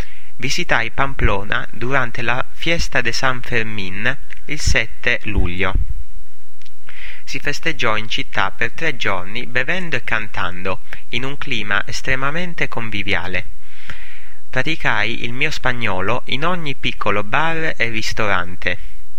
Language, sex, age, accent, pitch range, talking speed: English, male, 30-49, Italian, 100-130 Hz, 115 wpm